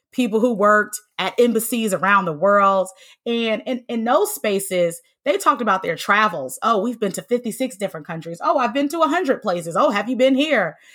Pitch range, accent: 180-240 Hz, American